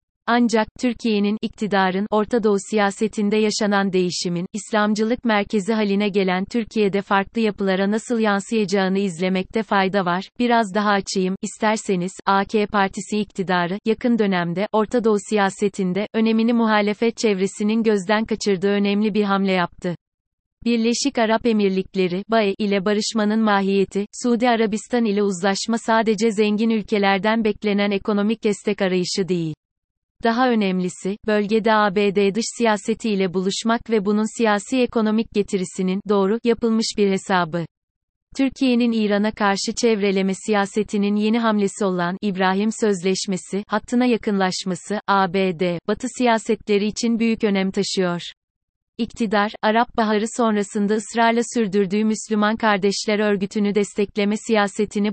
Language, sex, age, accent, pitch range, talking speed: Turkish, female, 30-49, native, 195-220 Hz, 115 wpm